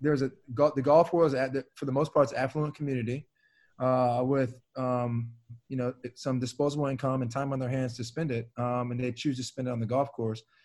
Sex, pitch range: male, 125-150 Hz